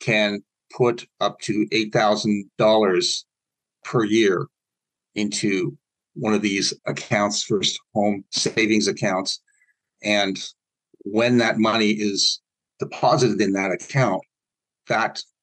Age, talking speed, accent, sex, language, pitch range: 50-69, 100 wpm, American, male, English, 100-120 Hz